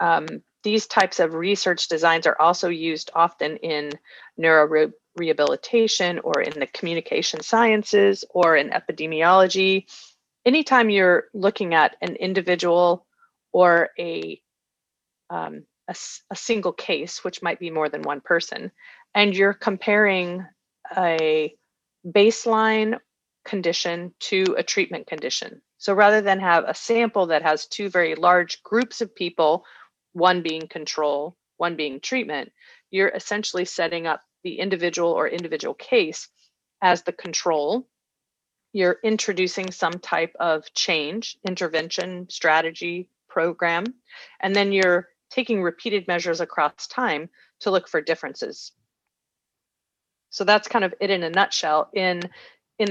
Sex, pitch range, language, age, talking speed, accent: female, 165-210 Hz, English, 30-49, 130 wpm, American